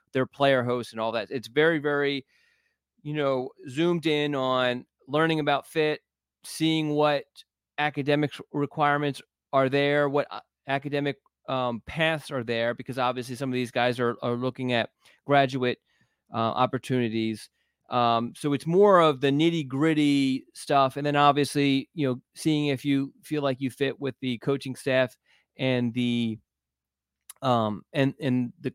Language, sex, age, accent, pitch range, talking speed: English, male, 30-49, American, 130-150 Hz, 150 wpm